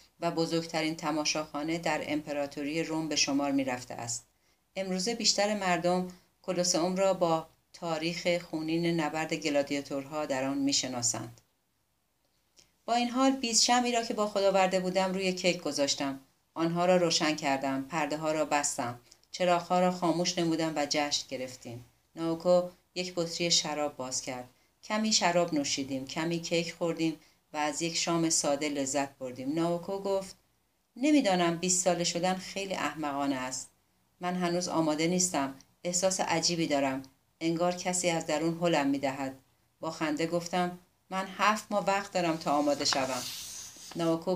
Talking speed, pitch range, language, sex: 140 wpm, 145-180 Hz, Persian, female